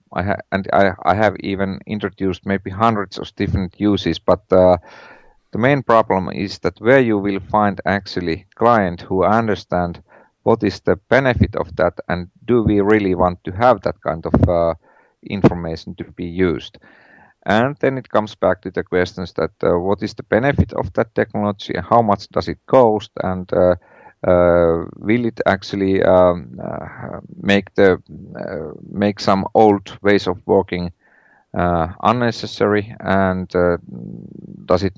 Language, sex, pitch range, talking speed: English, male, 90-105 Hz, 165 wpm